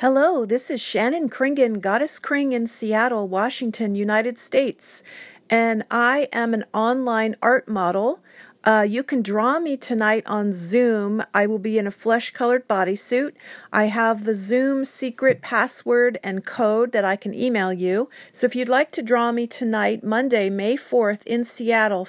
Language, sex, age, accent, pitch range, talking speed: English, female, 50-69, American, 205-245 Hz, 160 wpm